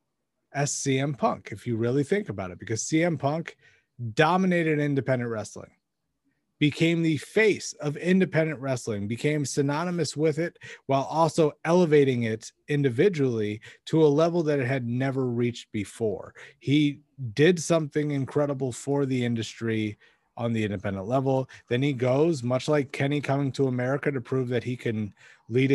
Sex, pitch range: male, 125-155 Hz